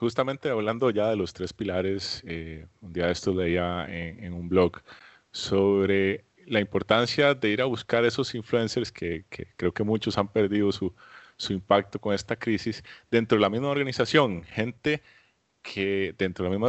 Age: 30-49